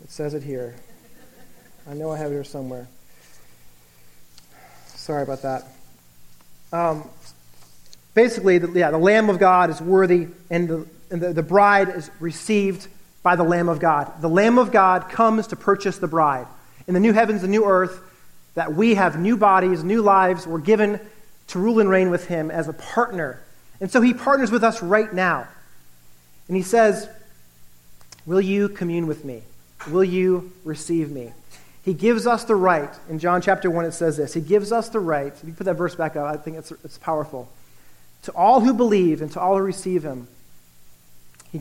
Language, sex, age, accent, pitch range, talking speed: English, male, 40-59, American, 150-200 Hz, 185 wpm